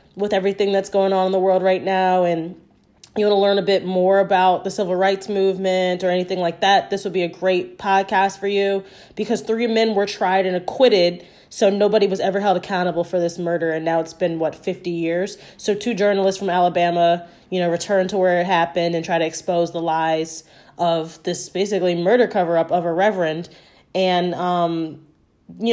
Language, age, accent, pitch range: English, 20-39, American, 175-205 Hz